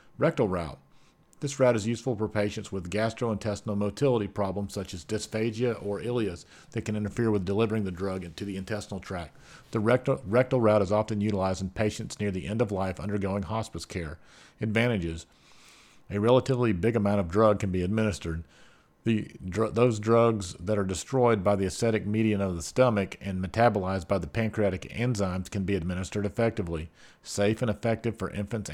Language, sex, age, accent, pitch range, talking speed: English, male, 40-59, American, 95-110 Hz, 175 wpm